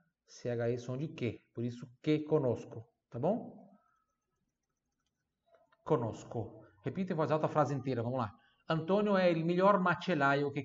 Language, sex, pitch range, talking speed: Italian, male, 125-180 Hz, 145 wpm